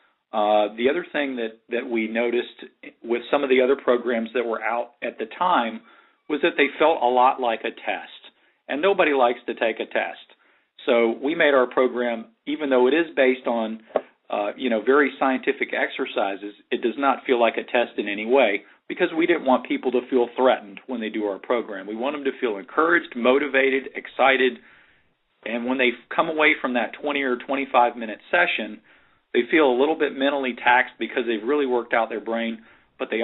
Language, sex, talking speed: English, male, 200 wpm